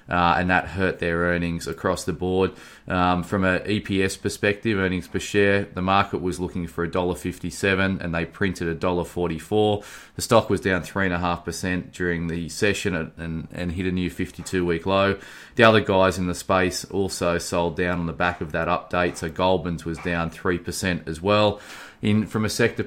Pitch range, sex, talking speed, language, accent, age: 85-100 Hz, male, 180 wpm, English, Australian, 20-39